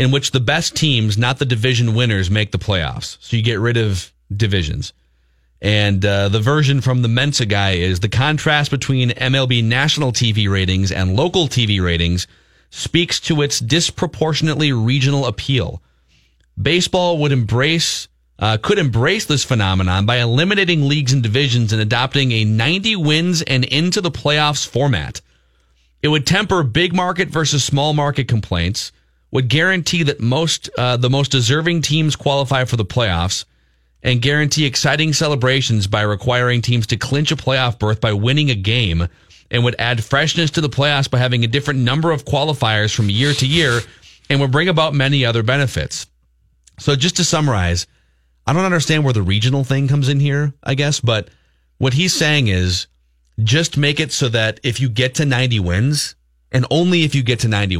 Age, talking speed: 30-49, 175 wpm